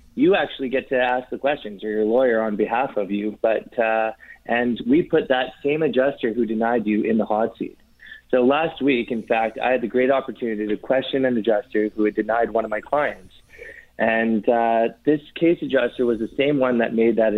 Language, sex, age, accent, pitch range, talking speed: English, male, 20-39, American, 110-130 Hz, 215 wpm